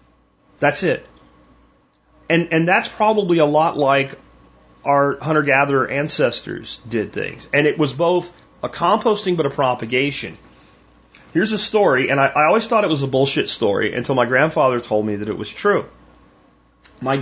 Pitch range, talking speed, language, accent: 110-140 Hz, 160 wpm, English, American